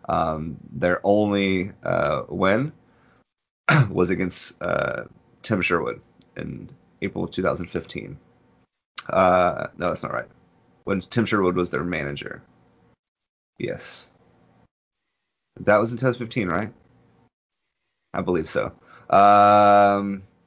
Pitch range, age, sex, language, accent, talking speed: 90-110 Hz, 20-39, male, English, American, 105 wpm